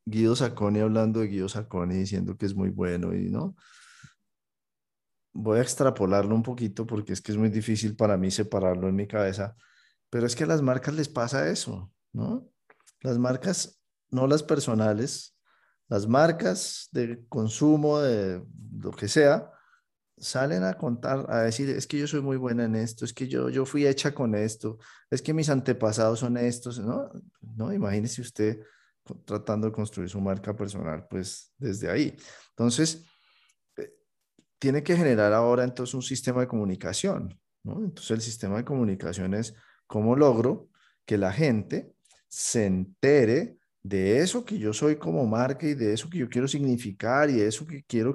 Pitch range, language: 105-145 Hz, Spanish